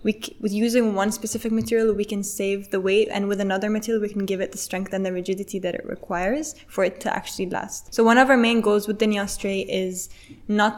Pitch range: 190-215 Hz